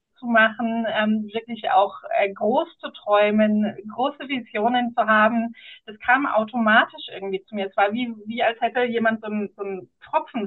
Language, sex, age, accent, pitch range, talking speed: German, female, 30-49, German, 210-265 Hz, 170 wpm